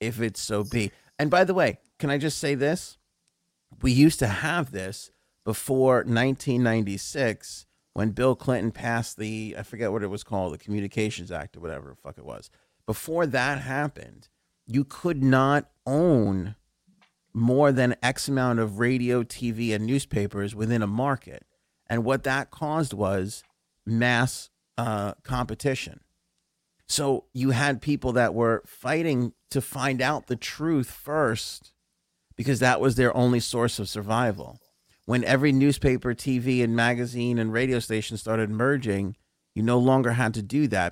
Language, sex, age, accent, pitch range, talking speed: English, male, 30-49, American, 110-135 Hz, 155 wpm